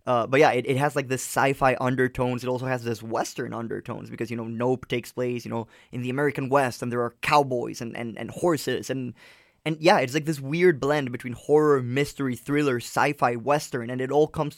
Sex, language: male, English